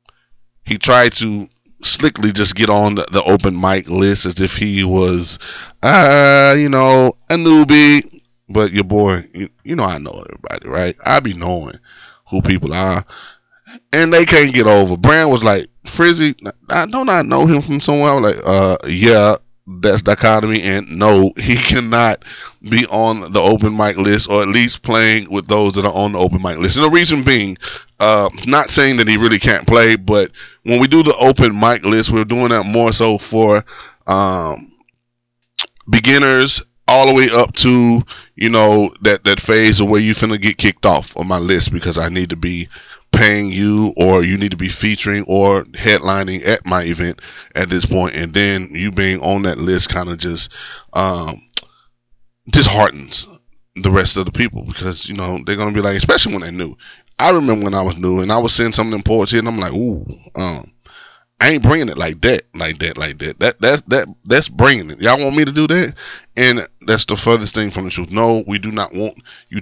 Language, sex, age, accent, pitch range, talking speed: English, male, 20-39, American, 95-120 Hz, 200 wpm